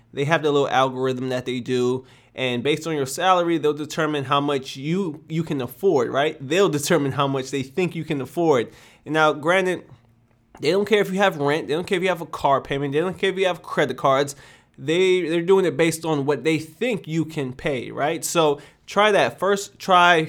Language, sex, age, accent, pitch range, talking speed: Italian, male, 20-39, American, 135-160 Hz, 225 wpm